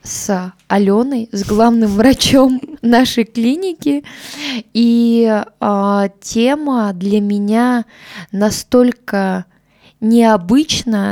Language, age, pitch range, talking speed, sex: Russian, 20-39, 195-225 Hz, 75 wpm, female